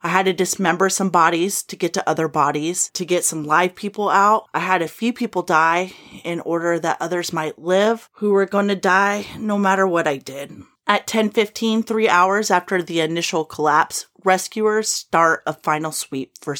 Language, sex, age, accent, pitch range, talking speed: English, female, 30-49, American, 175-215 Hz, 190 wpm